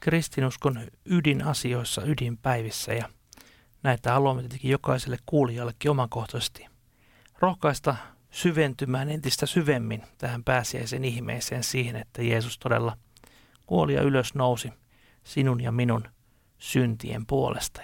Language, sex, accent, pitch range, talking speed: Finnish, male, native, 120-145 Hz, 100 wpm